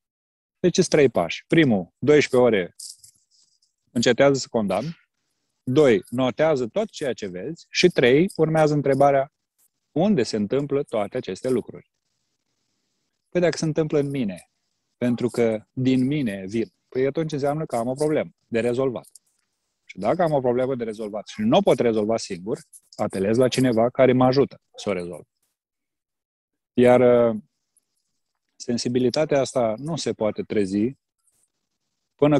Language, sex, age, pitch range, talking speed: Romanian, male, 30-49, 120-150 Hz, 140 wpm